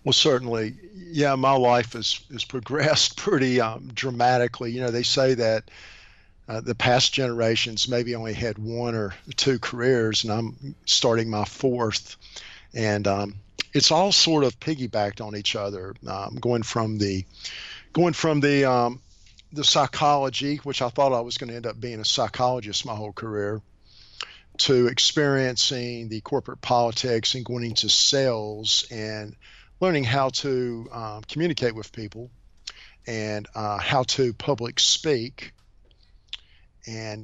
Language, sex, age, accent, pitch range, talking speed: English, male, 50-69, American, 110-135 Hz, 145 wpm